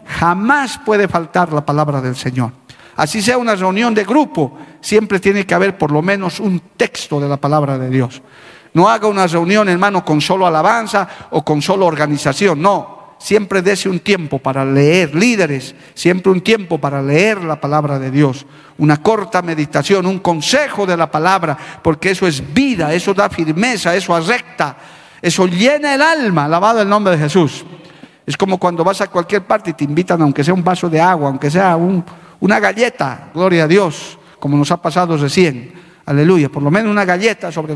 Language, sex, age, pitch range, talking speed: Spanish, male, 50-69, 155-210 Hz, 190 wpm